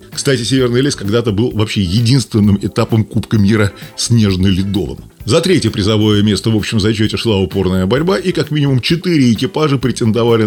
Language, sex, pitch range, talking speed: Russian, male, 100-140 Hz, 155 wpm